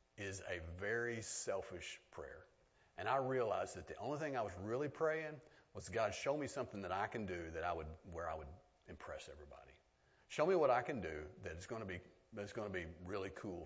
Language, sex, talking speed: English, male, 205 wpm